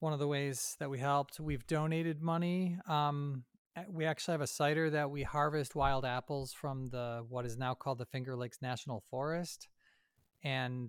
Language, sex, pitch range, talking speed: English, male, 115-140 Hz, 180 wpm